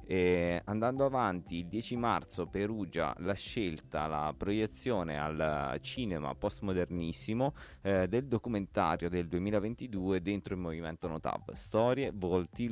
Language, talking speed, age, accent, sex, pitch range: Italian, 120 wpm, 20-39, native, male, 90-115 Hz